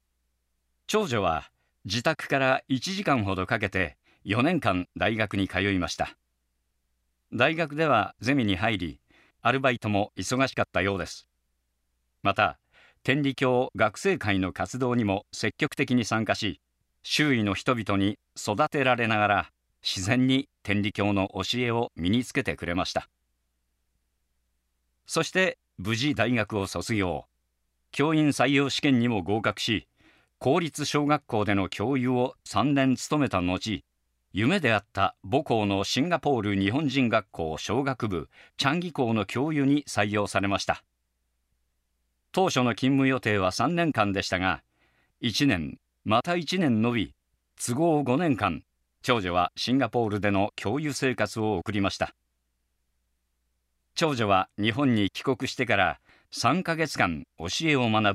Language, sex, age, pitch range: Japanese, male, 50-69, 85-135 Hz